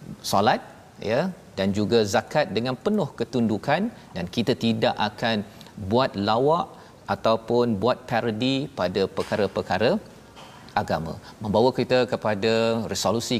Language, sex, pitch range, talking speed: Malayalam, male, 110-135 Hz, 110 wpm